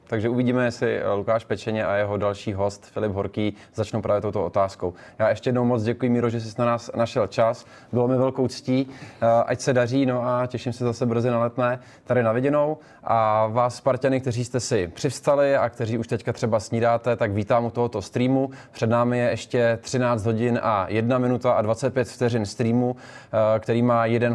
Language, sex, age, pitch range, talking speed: Czech, male, 20-39, 105-120 Hz, 195 wpm